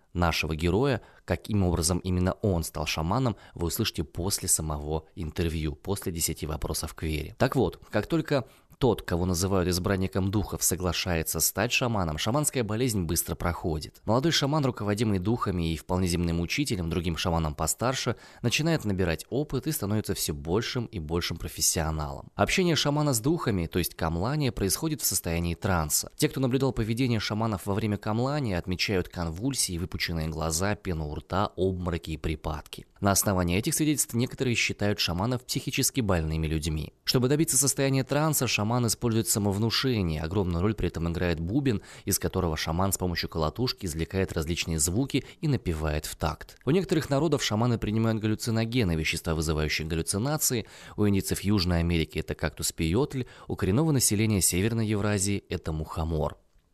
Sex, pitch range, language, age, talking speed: male, 85-115 Hz, Russian, 20-39, 150 wpm